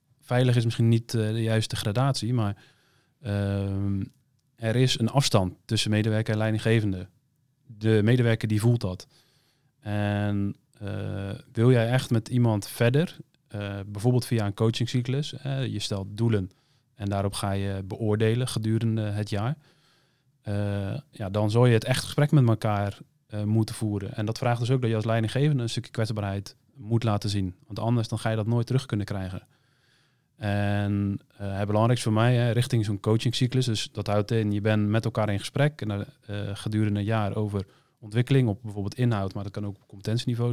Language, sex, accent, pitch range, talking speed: Dutch, male, Dutch, 105-125 Hz, 180 wpm